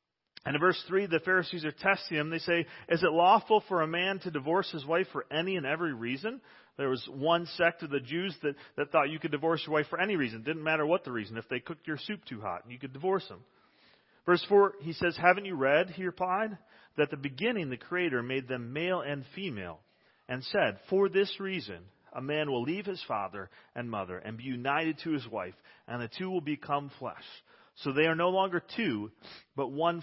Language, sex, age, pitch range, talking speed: English, male, 40-59, 135-185 Hz, 230 wpm